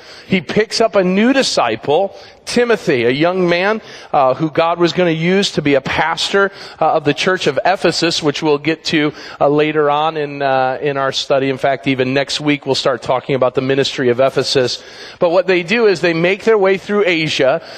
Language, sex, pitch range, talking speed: English, male, 150-195 Hz, 215 wpm